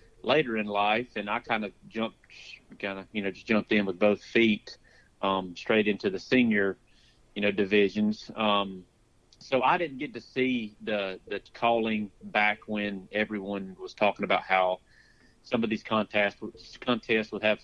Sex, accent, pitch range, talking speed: male, American, 100-115 Hz, 170 wpm